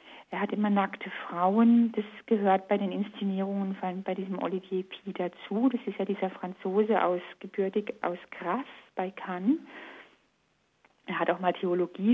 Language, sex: German, female